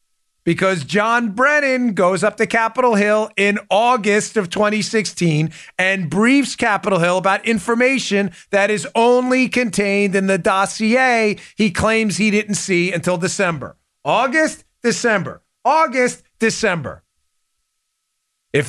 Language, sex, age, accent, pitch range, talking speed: English, male, 40-59, American, 185-230 Hz, 120 wpm